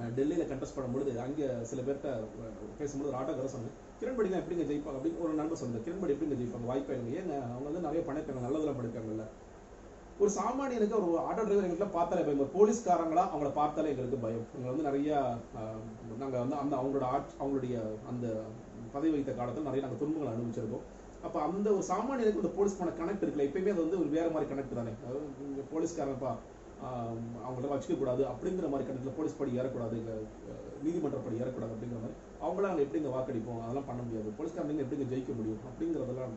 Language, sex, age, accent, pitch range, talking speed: Tamil, male, 30-49, native, 115-165 Hz, 70 wpm